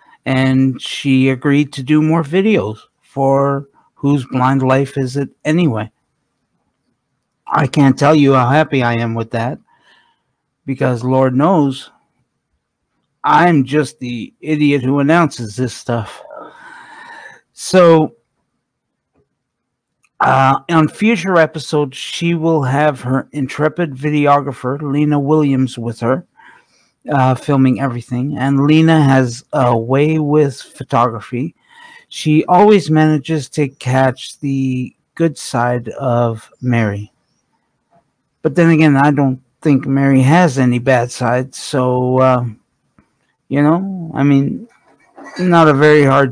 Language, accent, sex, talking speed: English, American, male, 120 wpm